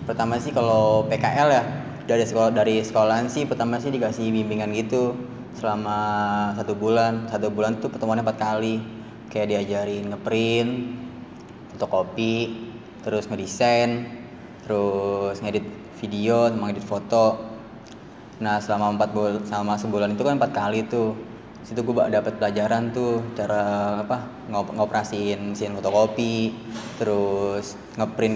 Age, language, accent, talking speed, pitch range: 20-39, Indonesian, native, 125 wpm, 105-120 Hz